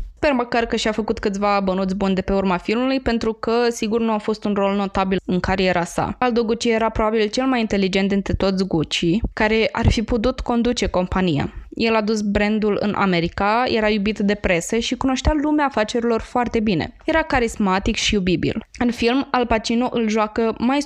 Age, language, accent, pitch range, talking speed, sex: 20-39, Romanian, native, 200-245 Hz, 195 wpm, female